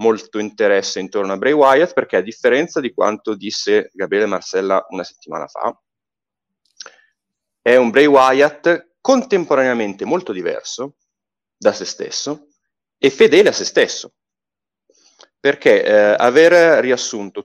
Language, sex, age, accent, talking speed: Italian, male, 30-49, native, 125 wpm